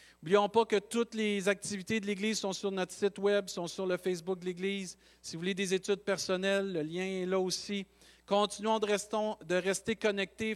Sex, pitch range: male, 190-220 Hz